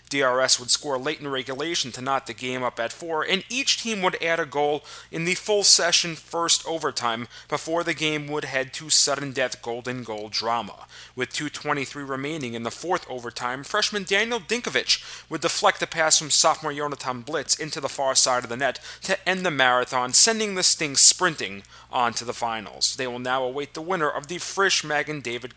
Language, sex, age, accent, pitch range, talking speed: English, male, 30-49, American, 125-170 Hz, 195 wpm